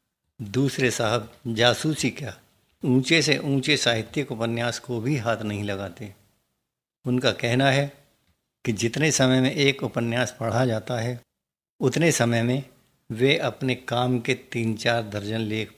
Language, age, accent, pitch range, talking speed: Hindi, 60-79, native, 115-135 Hz, 145 wpm